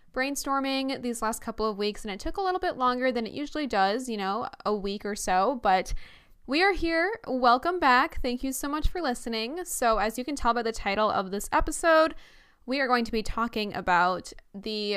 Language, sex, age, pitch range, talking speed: English, female, 10-29, 210-275 Hz, 215 wpm